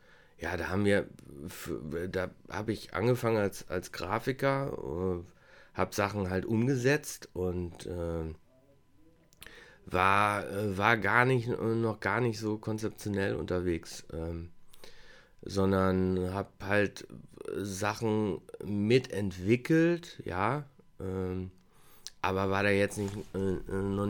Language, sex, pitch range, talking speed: German, male, 90-105 Hz, 100 wpm